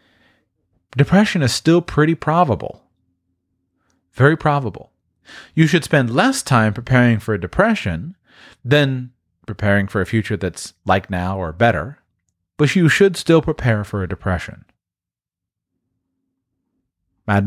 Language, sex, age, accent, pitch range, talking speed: English, male, 40-59, American, 100-155 Hz, 120 wpm